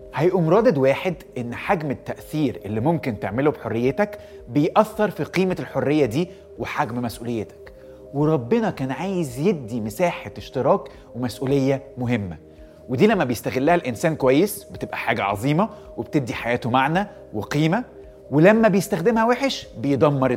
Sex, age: male, 30-49